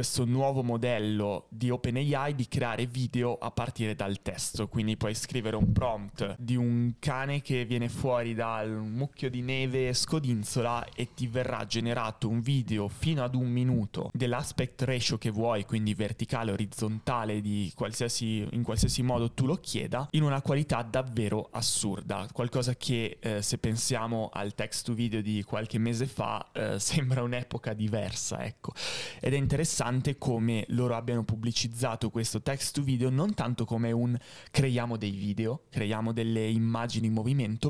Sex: male